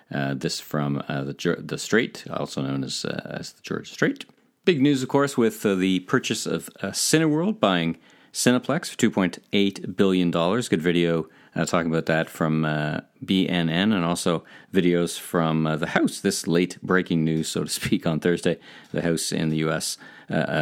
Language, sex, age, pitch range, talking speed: English, male, 40-59, 75-90 Hz, 190 wpm